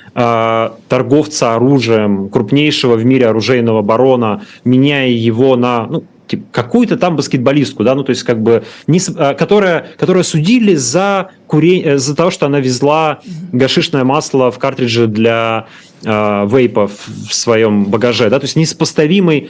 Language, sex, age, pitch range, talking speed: Russian, male, 30-49, 120-160 Hz, 140 wpm